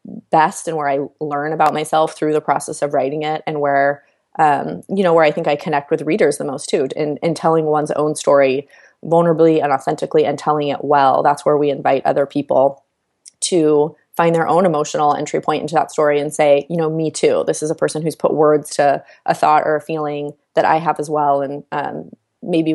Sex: female